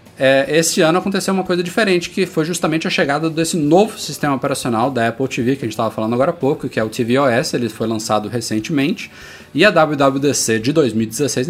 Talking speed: 205 wpm